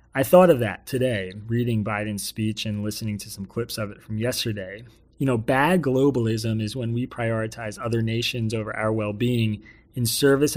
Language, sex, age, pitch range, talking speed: English, male, 30-49, 110-130 Hz, 180 wpm